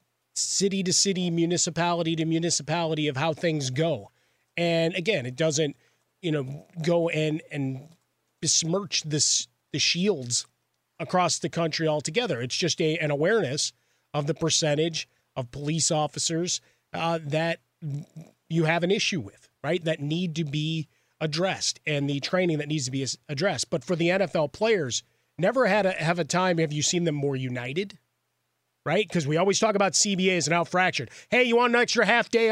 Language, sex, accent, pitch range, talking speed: English, male, American, 150-180 Hz, 170 wpm